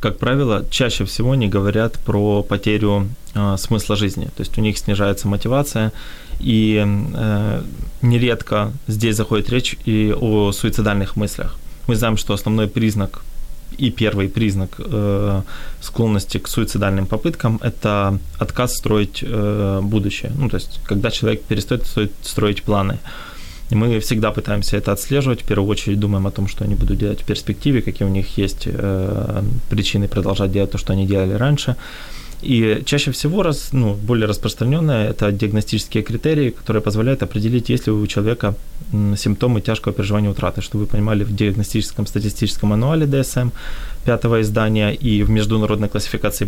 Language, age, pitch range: Ukrainian, 20-39, 100-120 Hz